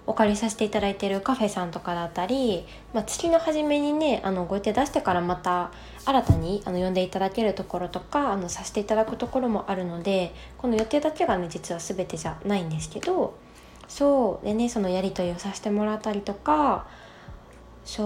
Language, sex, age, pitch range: Japanese, female, 20-39, 185-240 Hz